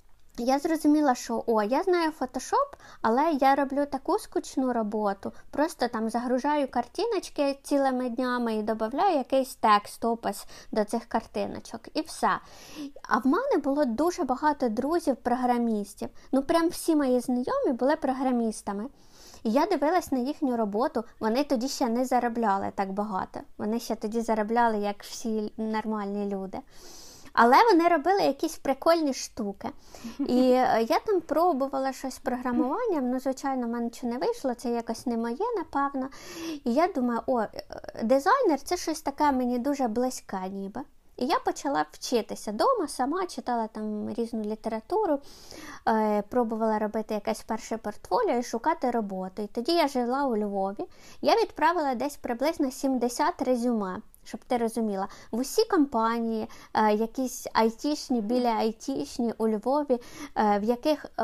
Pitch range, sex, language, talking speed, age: 225-285 Hz, female, Ukrainian, 140 wpm, 20-39